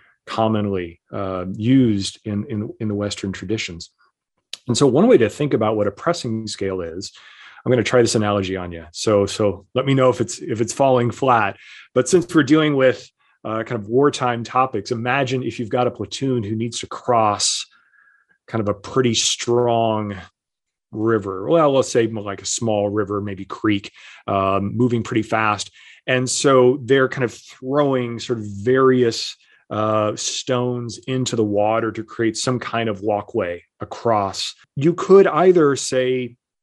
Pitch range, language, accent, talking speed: 105-130 Hz, English, American, 165 wpm